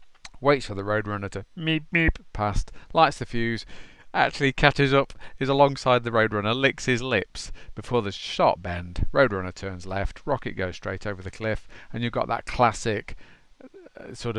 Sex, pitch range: male, 100-120 Hz